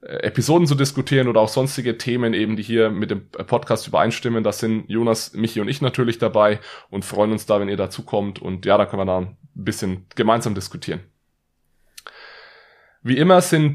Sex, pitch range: male, 115-135 Hz